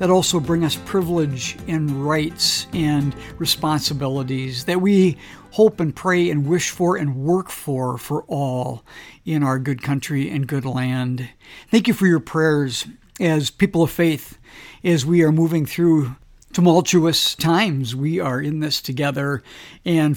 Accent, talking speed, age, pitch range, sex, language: American, 150 wpm, 50-69, 140-175 Hz, male, English